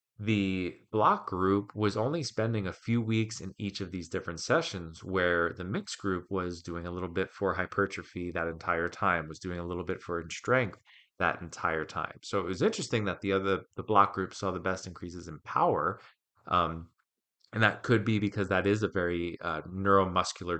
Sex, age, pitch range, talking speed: male, 30-49, 85-100 Hz, 195 wpm